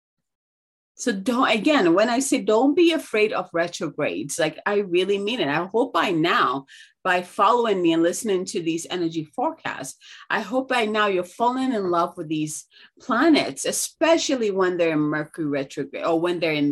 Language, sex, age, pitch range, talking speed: English, female, 30-49, 165-260 Hz, 180 wpm